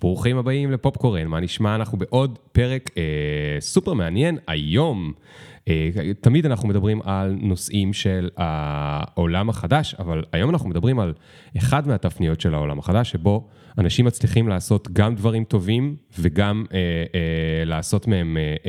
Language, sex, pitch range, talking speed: Hebrew, male, 85-120 Hz, 140 wpm